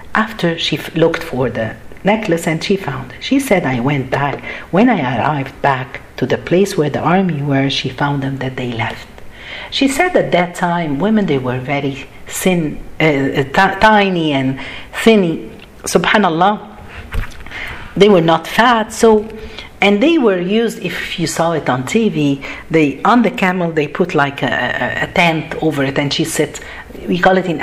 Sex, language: female, Arabic